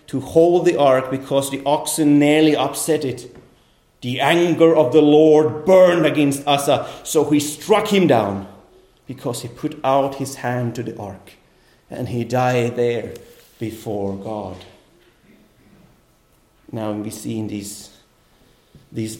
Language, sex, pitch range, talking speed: English, male, 115-150 Hz, 140 wpm